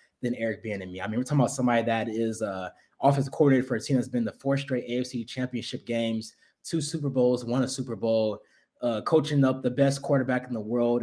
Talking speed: 235 wpm